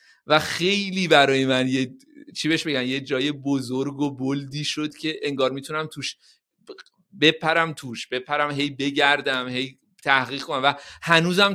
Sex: male